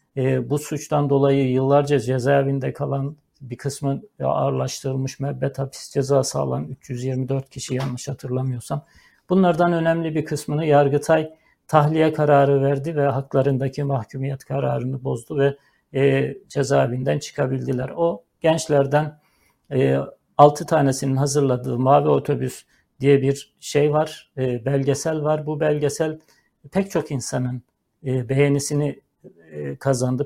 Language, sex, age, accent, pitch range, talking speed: Turkish, male, 60-79, native, 135-150 Hz, 115 wpm